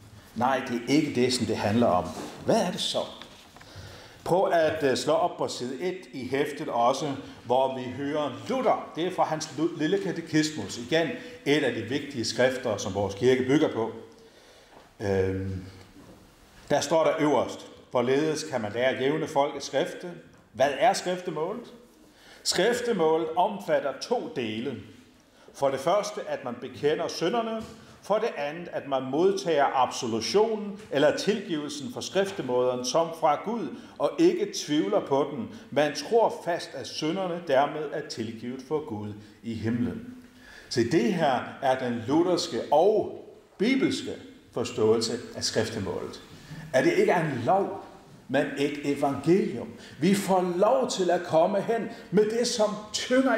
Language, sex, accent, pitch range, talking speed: Danish, male, native, 125-210 Hz, 150 wpm